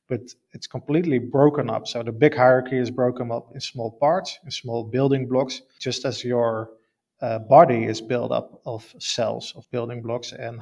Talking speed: 185 wpm